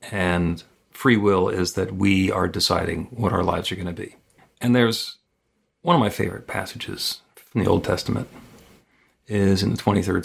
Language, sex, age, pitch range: English, male, 40-59, 90-105 Hz